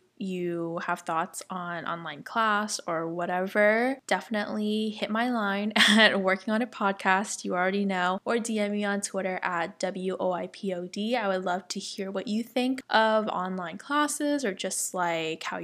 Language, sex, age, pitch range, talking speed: English, female, 20-39, 185-220 Hz, 180 wpm